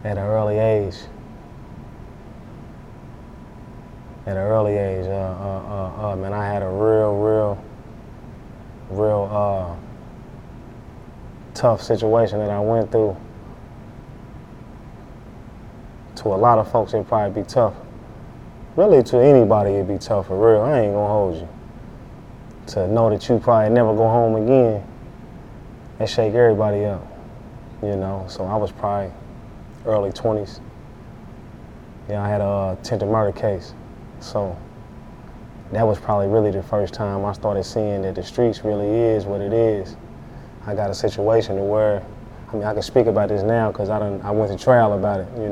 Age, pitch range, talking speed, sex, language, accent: 20-39, 100-115 Hz, 160 wpm, male, English, American